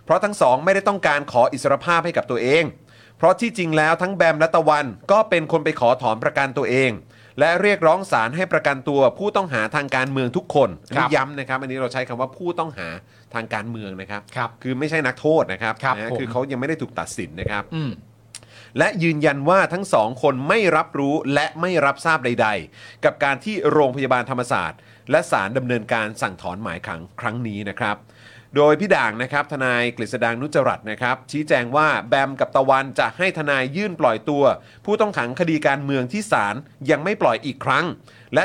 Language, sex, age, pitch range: Thai, male, 30-49, 120-160 Hz